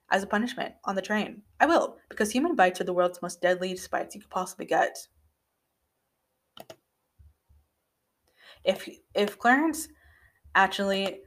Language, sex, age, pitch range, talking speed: English, female, 20-39, 170-220 Hz, 135 wpm